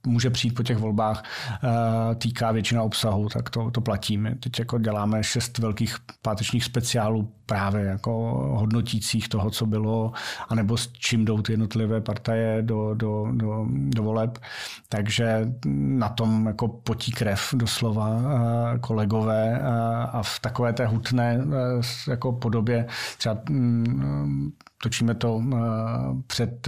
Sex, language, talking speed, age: male, Czech, 130 wpm, 40-59